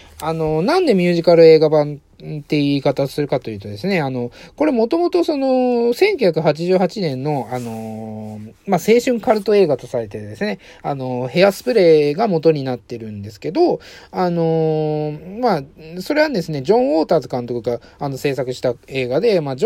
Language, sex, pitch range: Japanese, male, 125-185 Hz